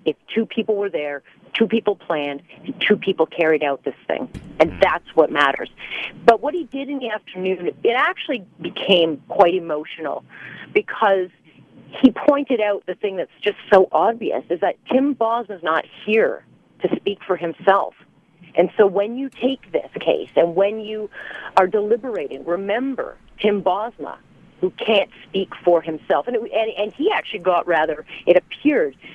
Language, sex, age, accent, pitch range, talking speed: English, female, 40-59, American, 160-210 Hz, 165 wpm